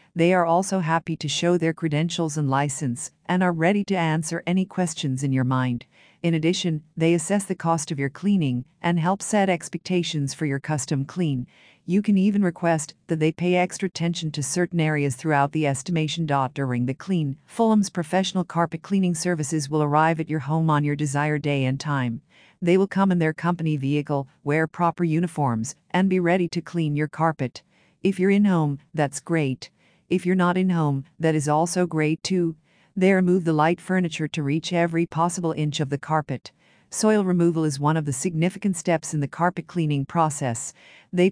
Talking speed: 190 wpm